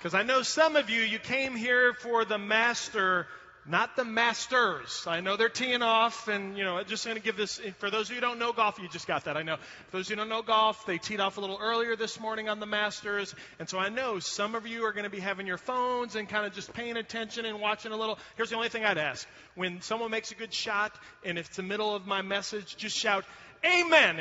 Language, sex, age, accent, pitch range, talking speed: English, male, 30-49, American, 175-225 Hz, 270 wpm